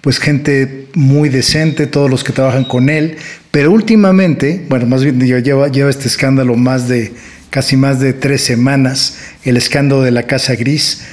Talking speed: 175 wpm